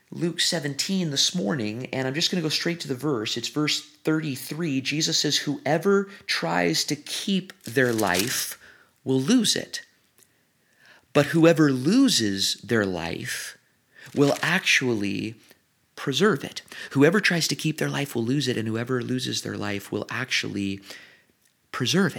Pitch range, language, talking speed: 105-160 Hz, English, 145 wpm